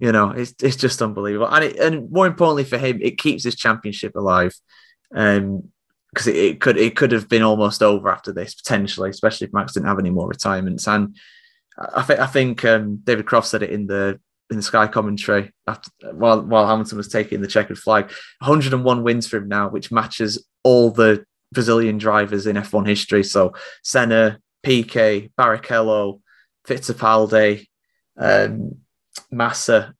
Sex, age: male, 20-39